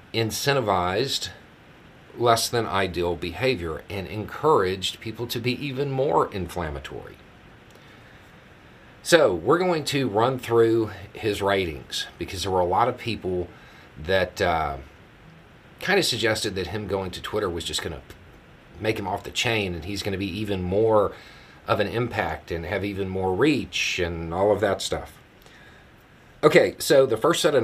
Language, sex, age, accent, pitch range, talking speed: English, male, 40-59, American, 90-115 Hz, 160 wpm